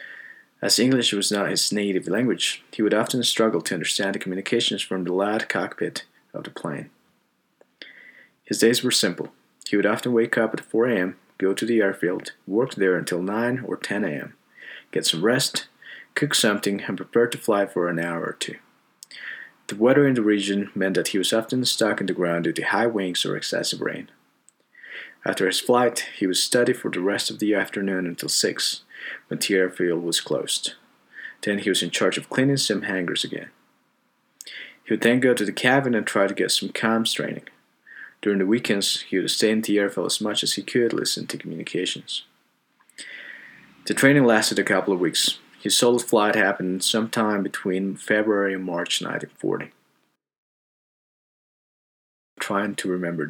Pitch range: 95-115 Hz